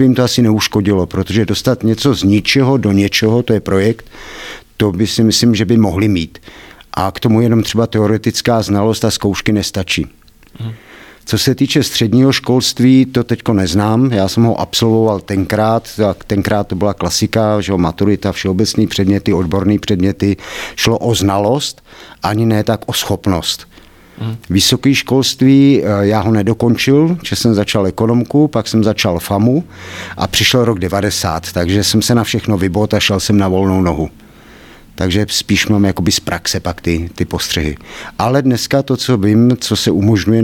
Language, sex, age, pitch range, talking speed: Czech, male, 50-69, 100-115 Hz, 165 wpm